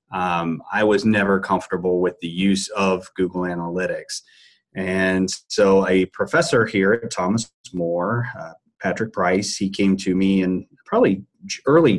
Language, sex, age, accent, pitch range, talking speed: English, male, 30-49, American, 95-115 Hz, 145 wpm